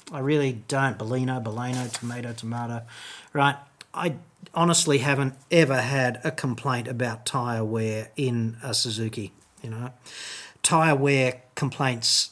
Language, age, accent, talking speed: English, 40-59, Australian, 125 wpm